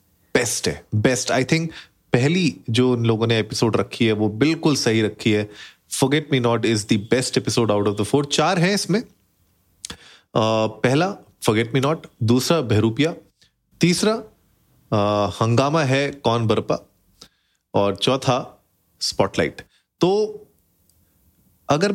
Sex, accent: male, native